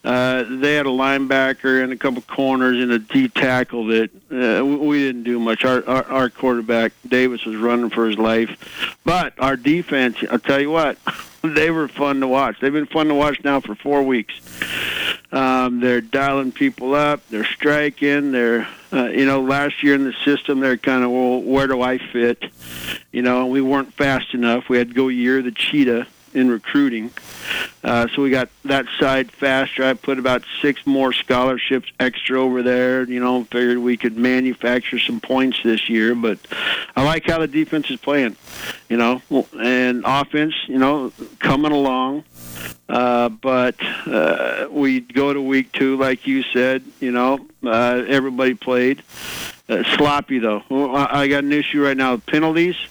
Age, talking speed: 50-69, 180 wpm